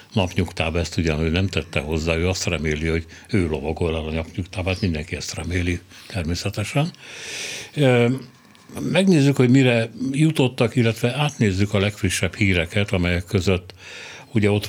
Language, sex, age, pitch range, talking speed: Hungarian, male, 60-79, 90-110 Hz, 135 wpm